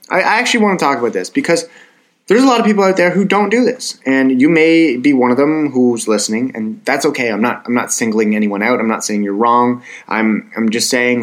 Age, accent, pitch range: 20-39, American, 110-140 Hz